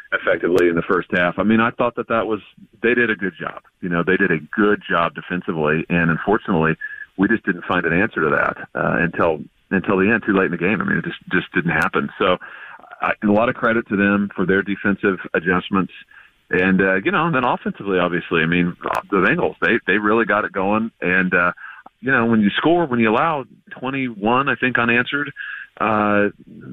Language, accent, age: English, American, 40-59